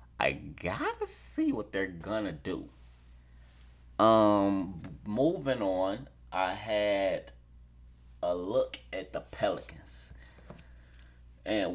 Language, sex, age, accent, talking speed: English, male, 30-49, American, 100 wpm